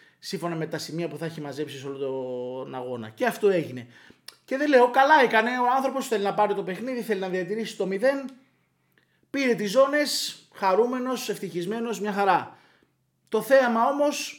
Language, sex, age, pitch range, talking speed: Greek, male, 30-49, 170-245 Hz, 175 wpm